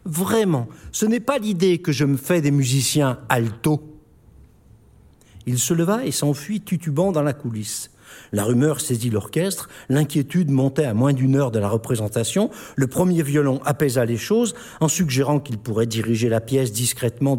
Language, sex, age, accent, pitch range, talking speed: French, male, 60-79, French, 125-180 Hz, 165 wpm